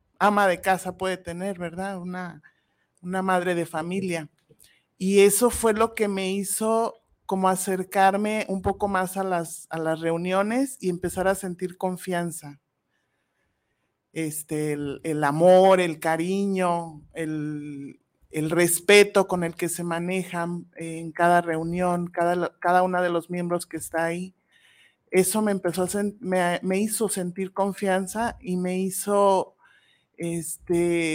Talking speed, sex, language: 140 wpm, male, Spanish